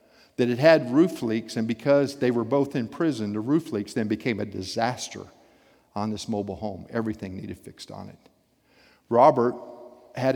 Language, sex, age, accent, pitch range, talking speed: English, male, 50-69, American, 105-125 Hz, 175 wpm